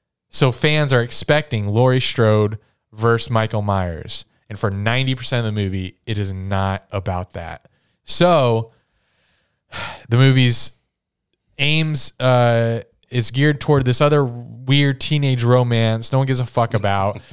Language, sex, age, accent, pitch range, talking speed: English, male, 20-39, American, 100-125 Hz, 135 wpm